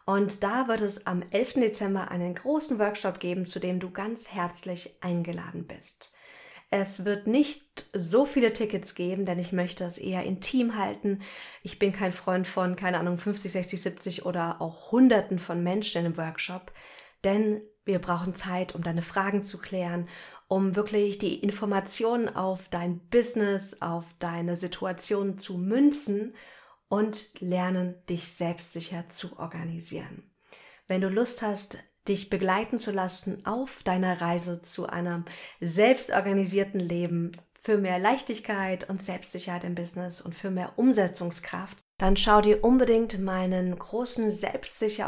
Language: German